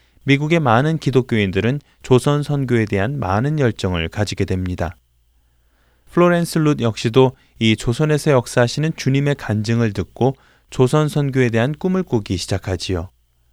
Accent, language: native, Korean